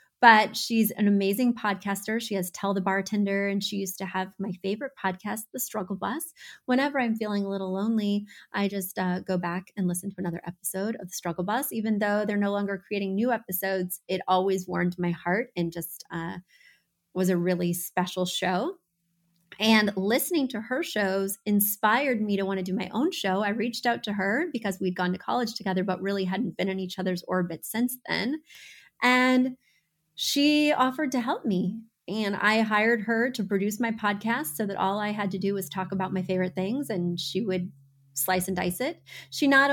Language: English